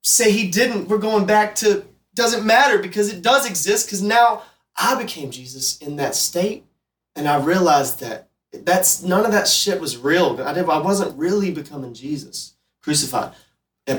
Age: 20-39